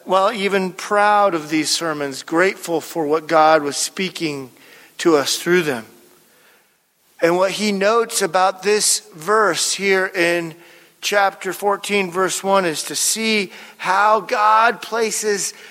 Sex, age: male, 50-69